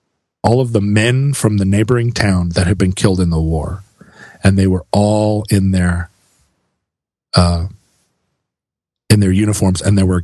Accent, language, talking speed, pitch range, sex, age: American, English, 165 wpm, 90-115 Hz, male, 40-59